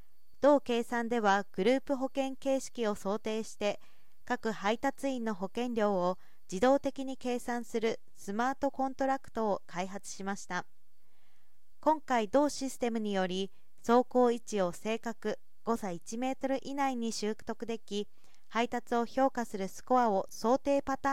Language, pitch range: Japanese, 210-265 Hz